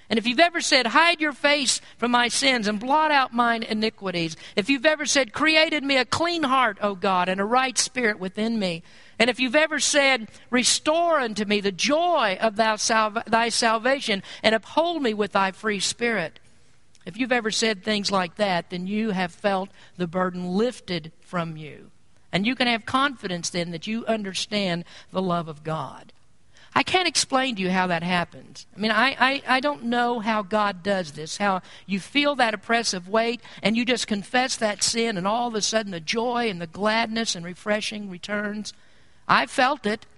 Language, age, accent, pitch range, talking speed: English, 50-69, American, 185-250 Hz, 190 wpm